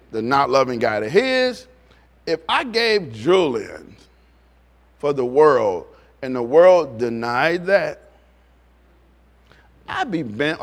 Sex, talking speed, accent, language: male, 120 wpm, American, English